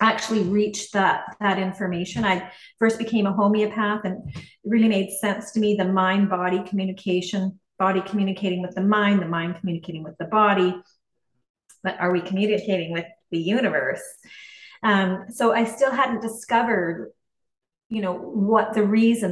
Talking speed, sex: 150 wpm, female